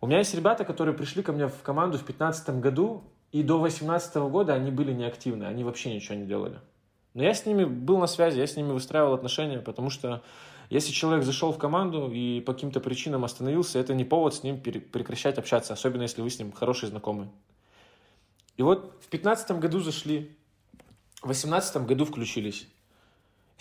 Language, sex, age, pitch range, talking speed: Russian, male, 20-39, 120-155 Hz, 190 wpm